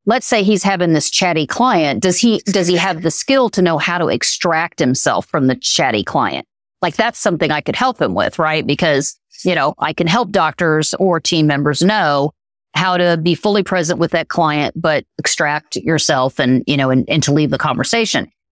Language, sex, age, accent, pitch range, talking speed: English, female, 40-59, American, 155-205 Hz, 205 wpm